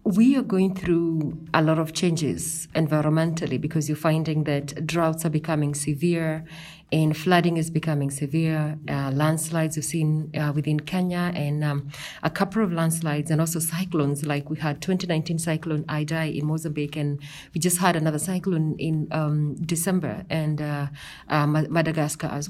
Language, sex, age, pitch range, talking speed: English, female, 30-49, 150-175 Hz, 160 wpm